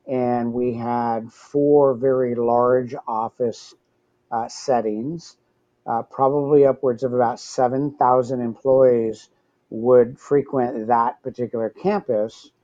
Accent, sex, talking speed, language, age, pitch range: American, male, 100 wpm, English, 50-69, 110-130 Hz